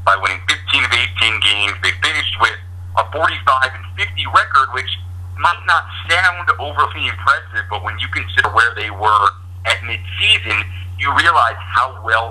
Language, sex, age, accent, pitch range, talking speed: English, male, 50-69, American, 90-105 Hz, 160 wpm